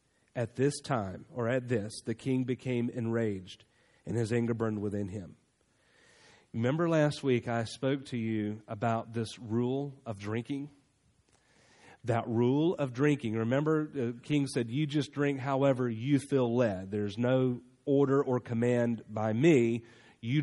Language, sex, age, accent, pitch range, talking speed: English, male, 40-59, American, 115-145 Hz, 150 wpm